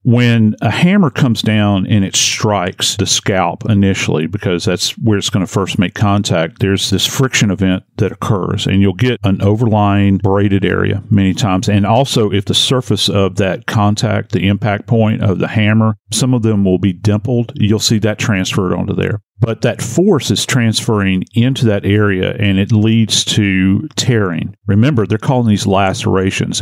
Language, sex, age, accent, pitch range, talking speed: English, male, 40-59, American, 100-125 Hz, 175 wpm